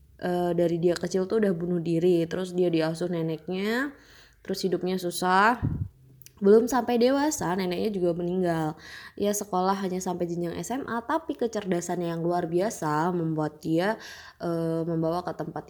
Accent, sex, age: native, female, 20-39